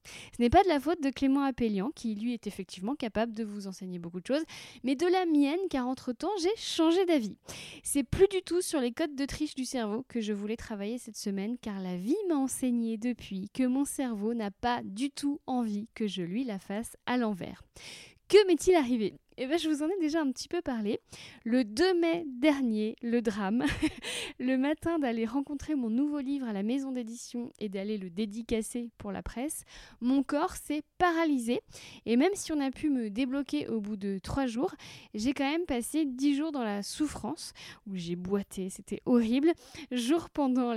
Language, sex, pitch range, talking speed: French, female, 225-295 Hz, 205 wpm